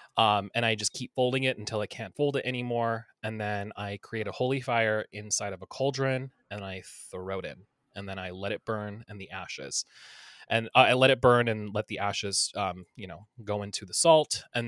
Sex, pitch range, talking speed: male, 105-135 Hz, 225 wpm